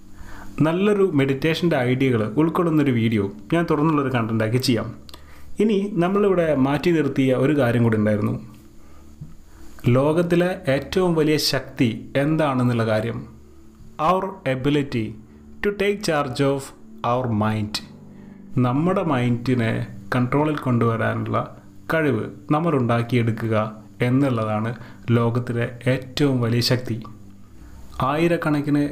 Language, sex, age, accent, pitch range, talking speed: Malayalam, male, 30-49, native, 110-145 Hz, 90 wpm